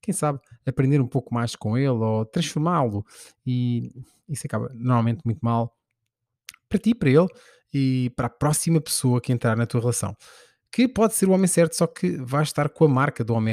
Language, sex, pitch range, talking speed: Portuguese, male, 120-150 Hz, 200 wpm